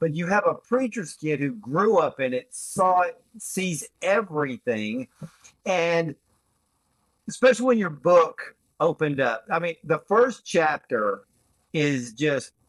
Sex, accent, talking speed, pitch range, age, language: male, American, 135 wpm, 155-225 Hz, 50-69, English